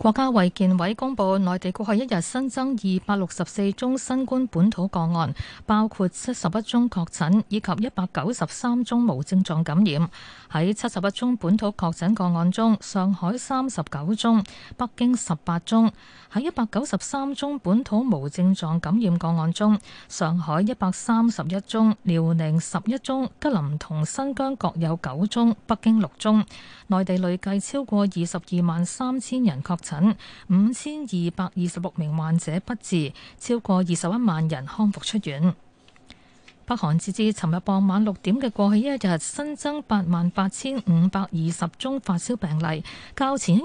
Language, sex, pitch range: Chinese, female, 170-235 Hz